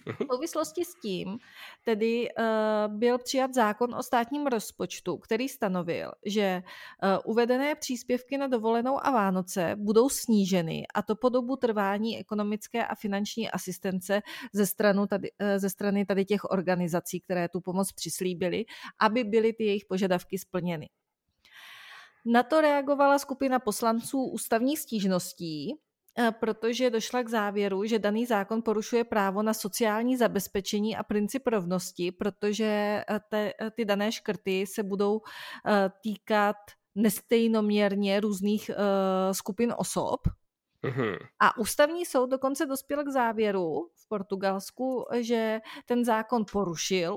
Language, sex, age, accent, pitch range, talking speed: Czech, female, 30-49, native, 200-240 Hz, 125 wpm